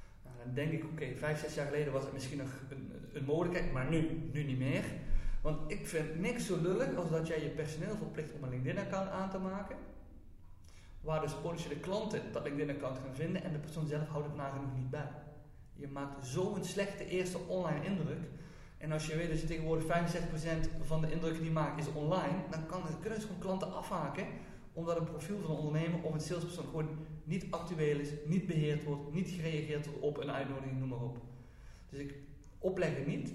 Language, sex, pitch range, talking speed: Dutch, male, 140-165 Hz, 210 wpm